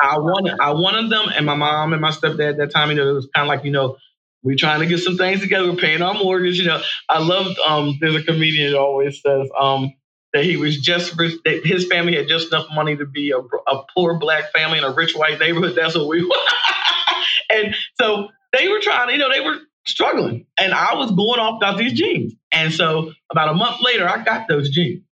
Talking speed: 245 wpm